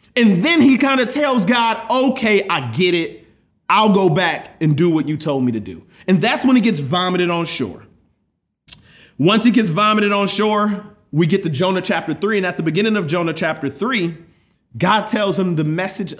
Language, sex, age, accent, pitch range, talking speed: English, male, 30-49, American, 160-220 Hz, 205 wpm